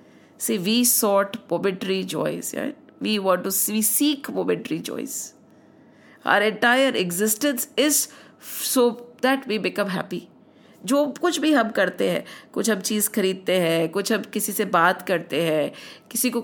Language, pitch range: English, 200-255 Hz